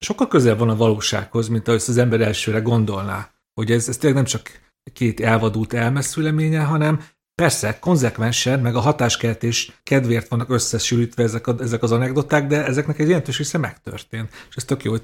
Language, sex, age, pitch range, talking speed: Hungarian, male, 40-59, 110-135 Hz, 180 wpm